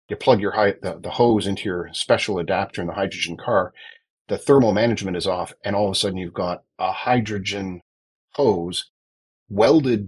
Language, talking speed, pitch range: English, 180 wpm, 90-125 Hz